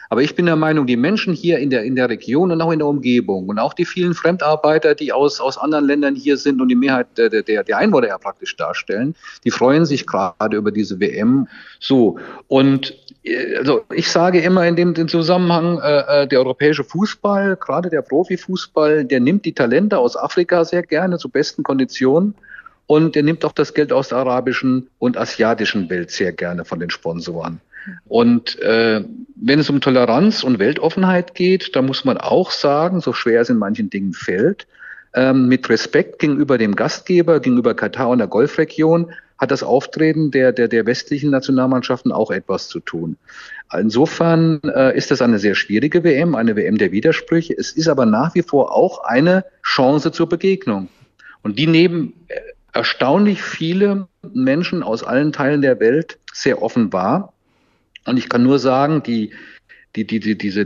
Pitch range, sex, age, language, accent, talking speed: 135-180 Hz, male, 40-59, German, German, 180 wpm